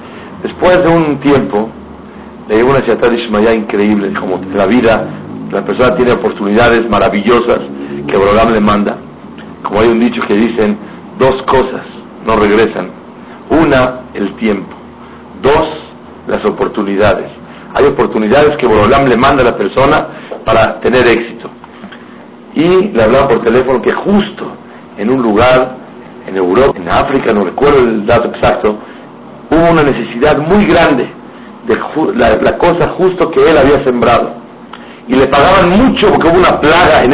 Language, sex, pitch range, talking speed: Spanish, male, 110-150 Hz, 150 wpm